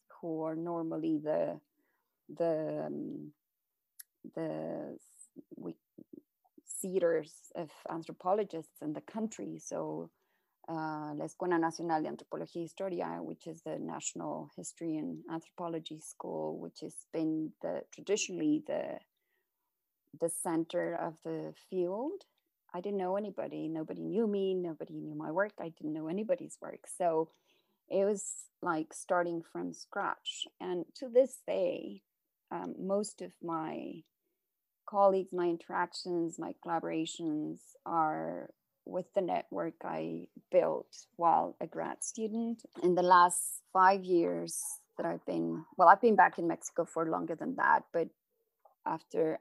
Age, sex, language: 30-49, female, English